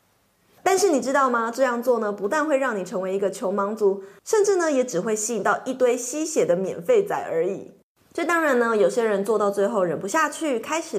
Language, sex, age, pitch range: Chinese, female, 20-39, 215-320 Hz